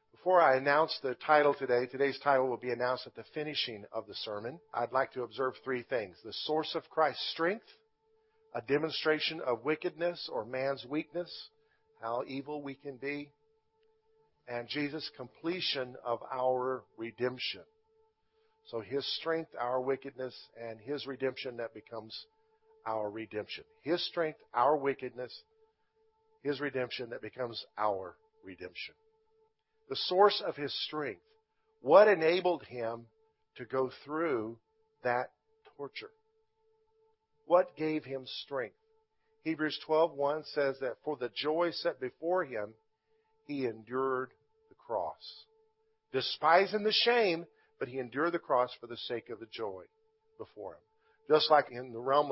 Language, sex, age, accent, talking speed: English, male, 50-69, American, 140 wpm